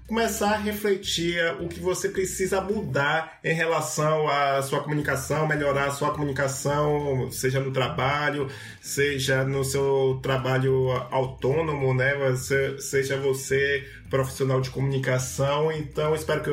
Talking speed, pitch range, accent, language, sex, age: 125 wpm, 140-175 Hz, Brazilian, Portuguese, male, 20-39